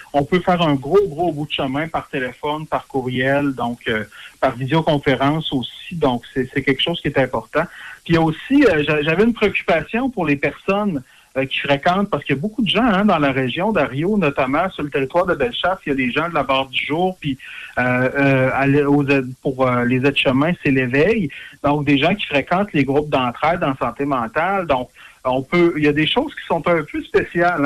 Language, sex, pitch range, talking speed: French, male, 140-175 Hz, 215 wpm